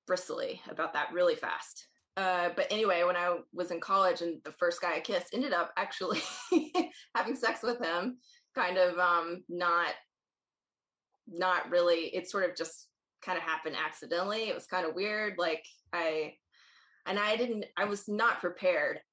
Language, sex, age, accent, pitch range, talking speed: English, female, 20-39, American, 165-200 Hz, 170 wpm